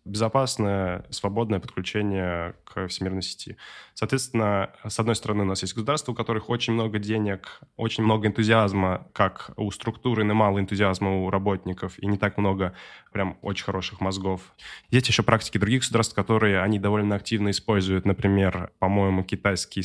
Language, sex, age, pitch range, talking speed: Russian, male, 10-29, 95-110 Hz, 150 wpm